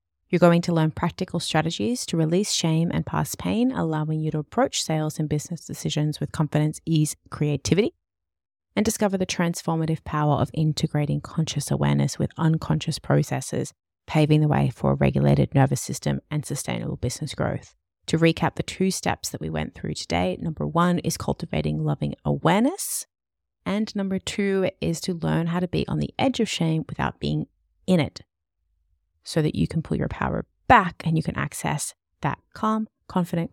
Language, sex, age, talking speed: English, female, 30-49, 175 wpm